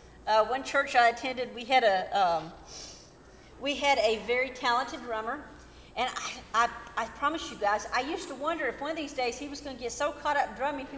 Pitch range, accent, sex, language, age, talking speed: 235-315 Hz, American, female, English, 50-69, 230 wpm